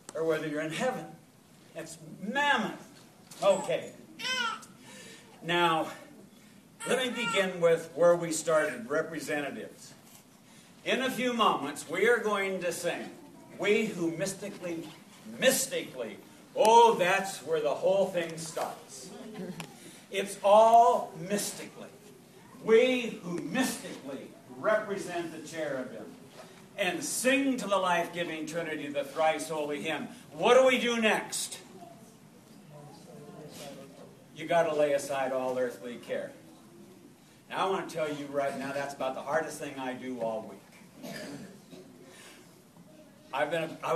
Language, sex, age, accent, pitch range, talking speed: English, male, 60-79, American, 155-220 Hz, 120 wpm